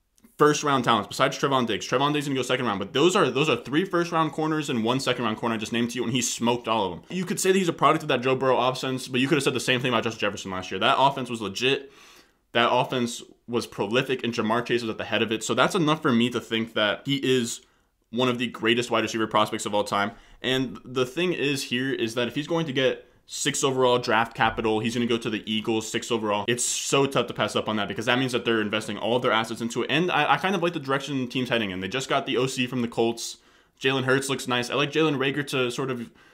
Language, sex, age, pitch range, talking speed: English, male, 20-39, 115-135 Hz, 290 wpm